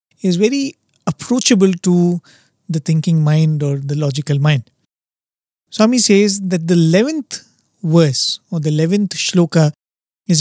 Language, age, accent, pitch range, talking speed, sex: English, 30-49, Indian, 150-185 Hz, 125 wpm, male